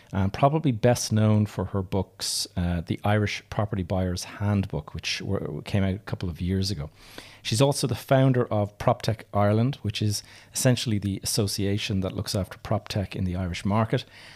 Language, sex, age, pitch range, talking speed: English, male, 30-49, 95-115 Hz, 175 wpm